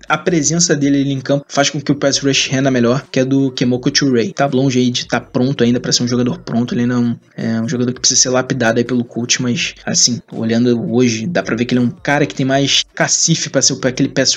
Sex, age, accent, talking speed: male, 20-39, Brazilian, 270 wpm